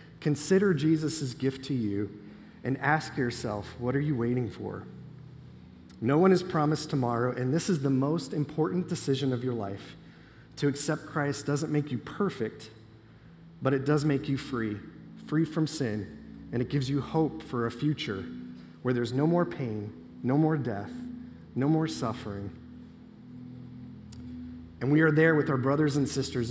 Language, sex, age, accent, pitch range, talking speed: English, male, 30-49, American, 110-150 Hz, 165 wpm